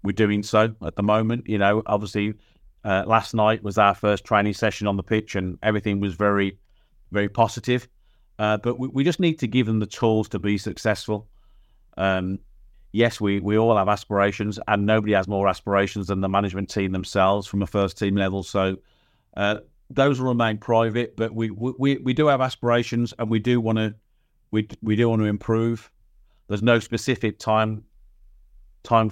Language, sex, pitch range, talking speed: English, male, 95-115 Hz, 190 wpm